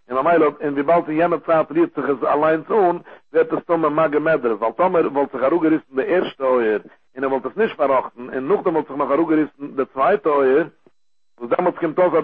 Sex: male